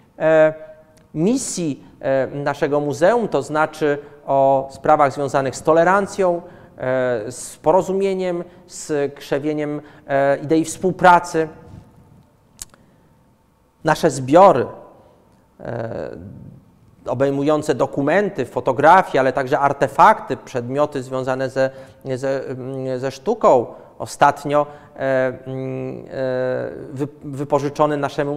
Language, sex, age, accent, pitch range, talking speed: Polish, male, 40-59, native, 135-175 Hz, 70 wpm